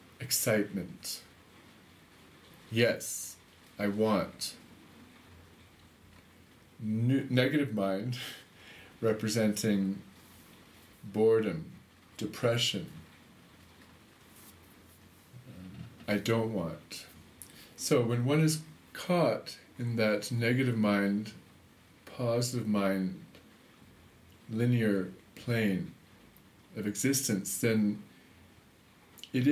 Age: 40-59